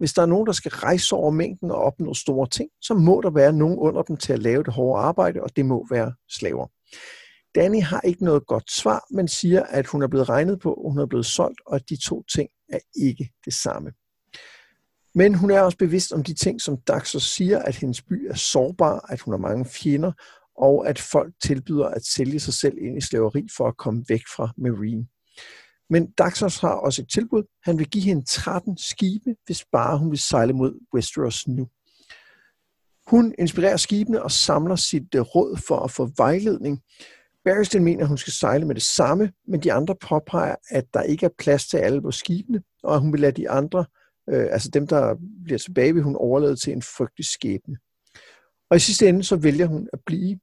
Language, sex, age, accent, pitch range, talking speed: Danish, male, 60-79, native, 135-190 Hz, 210 wpm